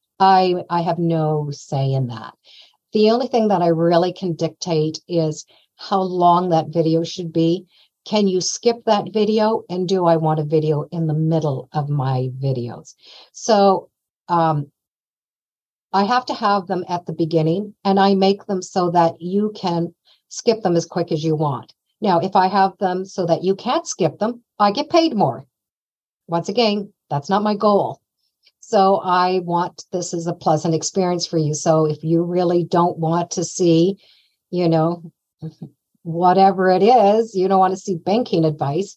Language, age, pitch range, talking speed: English, 50-69, 165-195 Hz, 175 wpm